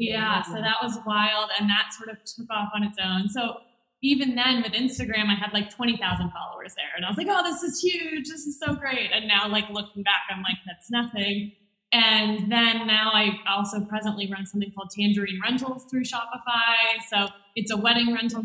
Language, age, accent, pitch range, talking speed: English, 20-39, American, 205-255 Hz, 210 wpm